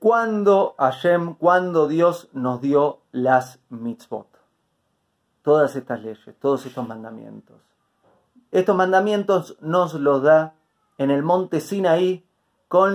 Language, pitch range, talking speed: Spanish, 135-180 Hz, 110 wpm